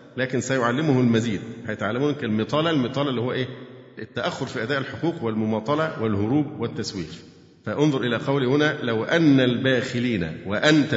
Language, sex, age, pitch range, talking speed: Arabic, male, 50-69, 120-155 Hz, 135 wpm